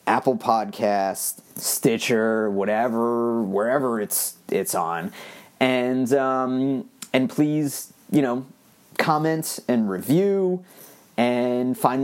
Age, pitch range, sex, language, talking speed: 30-49, 115-155 Hz, male, English, 95 wpm